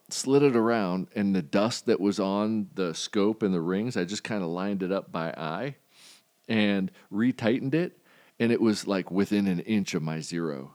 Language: English